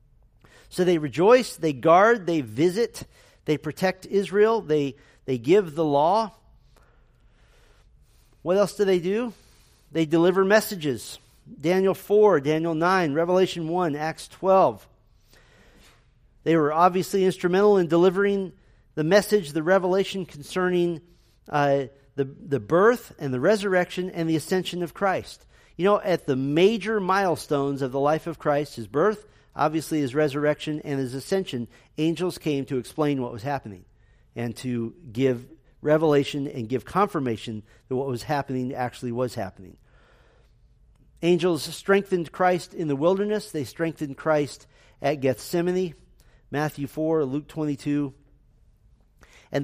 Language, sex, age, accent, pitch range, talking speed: English, male, 40-59, American, 135-180 Hz, 135 wpm